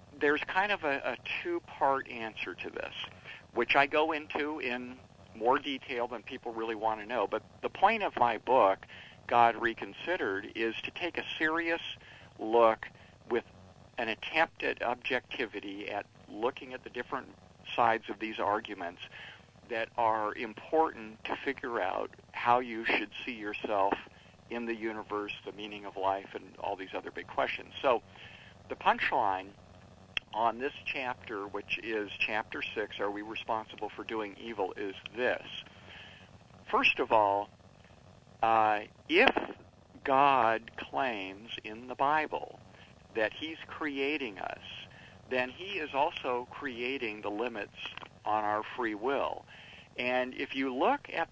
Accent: American